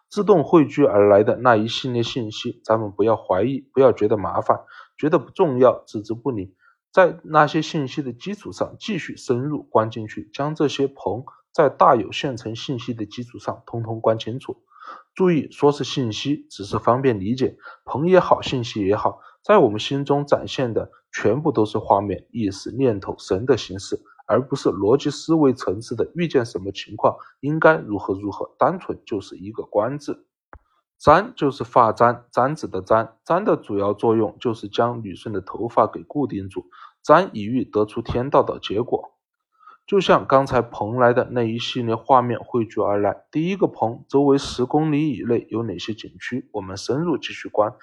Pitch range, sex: 110-145 Hz, male